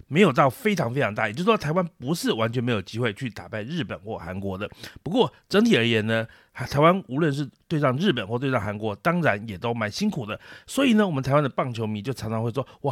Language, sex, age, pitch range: Chinese, male, 30-49, 110-175 Hz